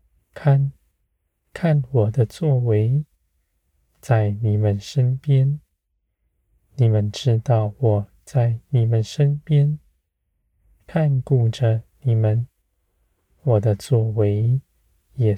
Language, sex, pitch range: Chinese, male, 95-130 Hz